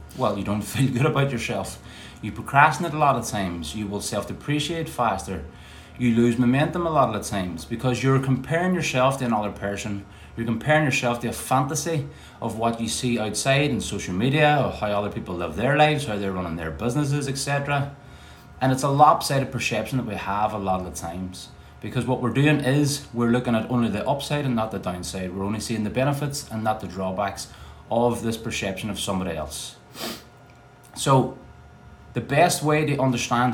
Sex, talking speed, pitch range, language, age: male, 195 wpm, 105-140 Hz, English, 30-49